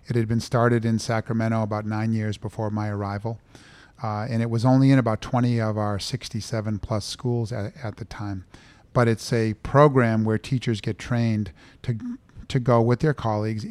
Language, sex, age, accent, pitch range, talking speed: English, male, 40-59, American, 105-120 Hz, 185 wpm